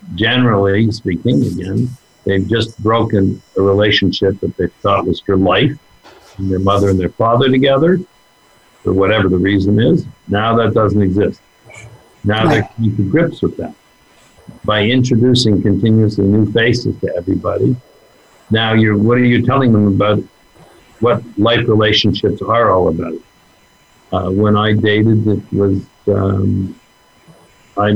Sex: male